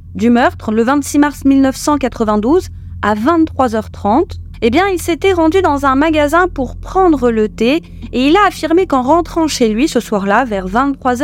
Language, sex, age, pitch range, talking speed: French, female, 30-49, 220-300 Hz, 175 wpm